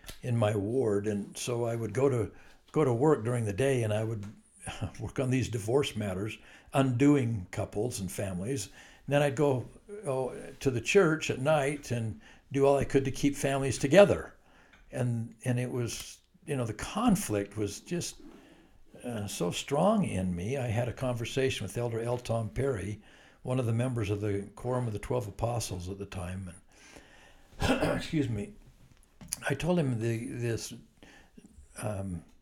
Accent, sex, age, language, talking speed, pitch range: American, male, 60-79, English, 170 wpm, 105-135 Hz